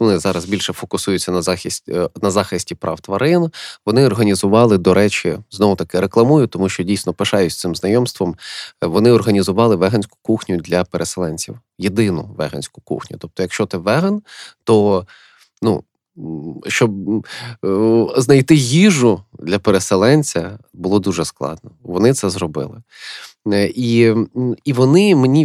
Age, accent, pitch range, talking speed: 20-39, native, 95-115 Hz, 125 wpm